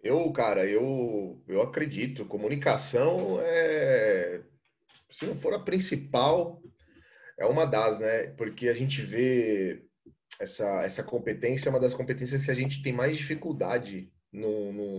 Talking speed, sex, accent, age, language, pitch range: 130 wpm, male, Brazilian, 30-49, Portuguese, 110-150 Hz